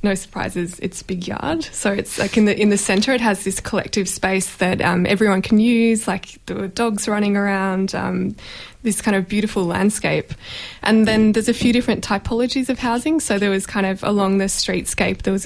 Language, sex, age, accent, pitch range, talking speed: English, female, 20-39, Australian, 190-220 Hz, 205 wpm